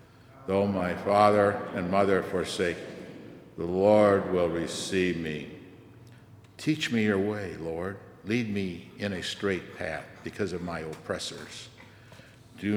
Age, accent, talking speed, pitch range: 60-79, American, 125 wpm, 95-115 Hz